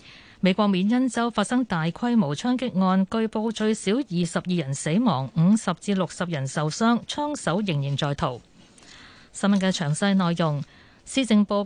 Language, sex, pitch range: Chinese, female, 165-235 Hz